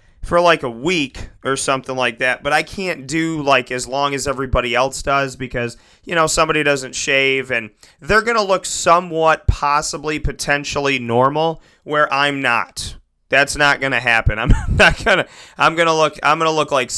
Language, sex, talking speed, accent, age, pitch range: English, male, 195 wpm, American, 30-49, 120-145 Hz